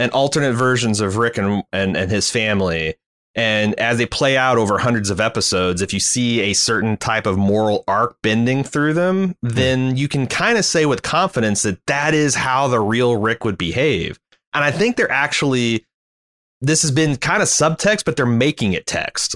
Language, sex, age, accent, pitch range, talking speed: English, male, 30-49, American, 110-150 Hz, 200 wpm